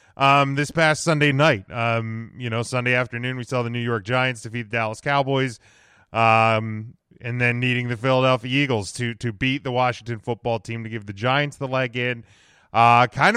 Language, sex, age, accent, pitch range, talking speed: English, male, 30-49, American, 120-145 Hz, 195 wpm